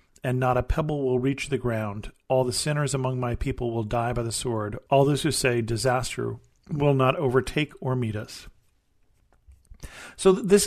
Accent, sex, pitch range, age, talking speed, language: American, male, 120-140 Hz, 40-59, 180 wpm, English